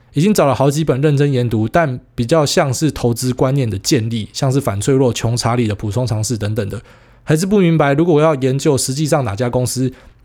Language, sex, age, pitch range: Chinese, male, 20-39, 110-145 Hz